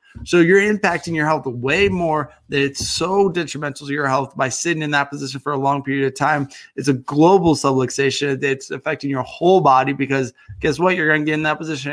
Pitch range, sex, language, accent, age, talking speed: 130-155 Hz, male, English, American, 20-39, 215 wpm